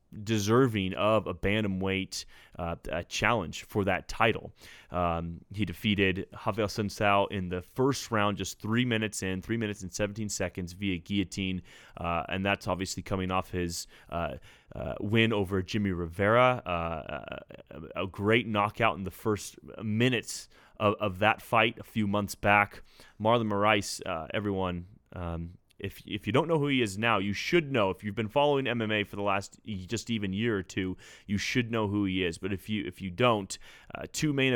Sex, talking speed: male, 180 wpm